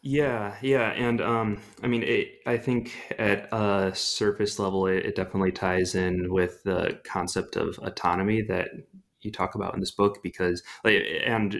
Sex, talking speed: male, 165 wpm